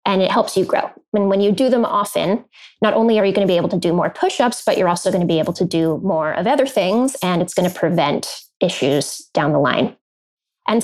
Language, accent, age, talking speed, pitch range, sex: English, American, 20-39, 255 wpm, 180-225 Hz, female